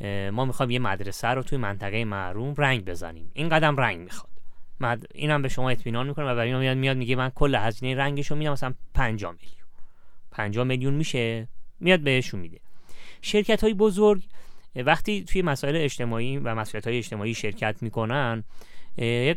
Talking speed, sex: 165 wpm, male